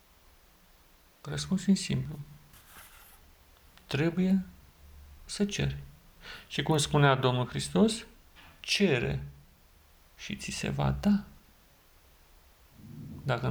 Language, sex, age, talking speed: Romanian, male, 50-69, 75 wpm